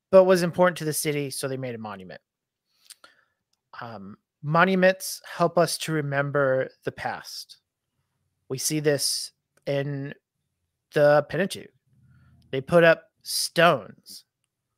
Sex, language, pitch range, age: male, English, 150-180 Hz, 30-49